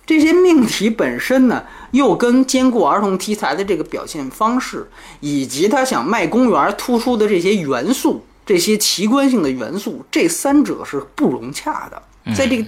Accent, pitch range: native, 170-270 Hz